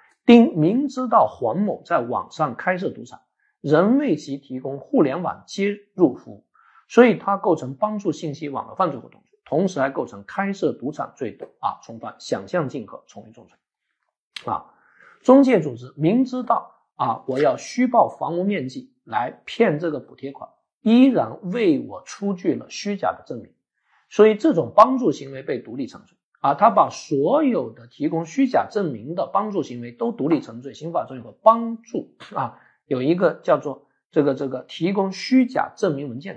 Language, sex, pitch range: Chinese, male, 150-235 Hz